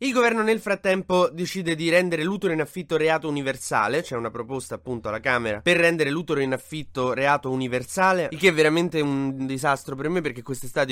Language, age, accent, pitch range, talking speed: Italian, 20-39, native, 130-170 Hz, 200 wpm